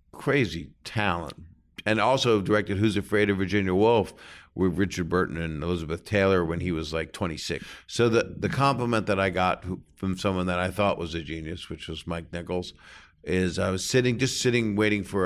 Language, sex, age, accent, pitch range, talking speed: English, male, 50-69, American, 85-100 Hz, 190 wpm